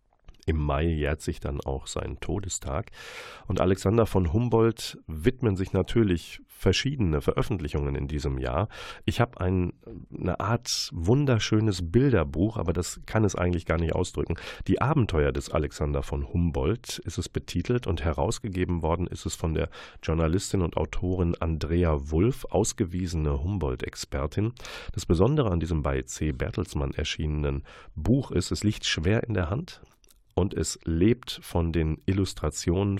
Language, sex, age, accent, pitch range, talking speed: German, male, 40-59, German, 80-105 Hz, 145 wpm